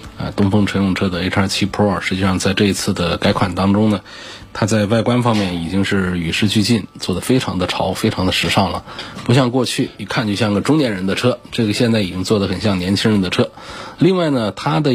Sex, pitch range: male, 95-120 Hz